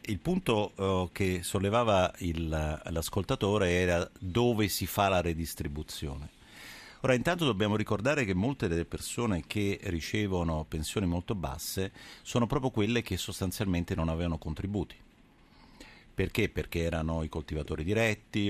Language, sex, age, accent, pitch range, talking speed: Italian, male, 50-69, native, 80-105 Hz, 125 wpm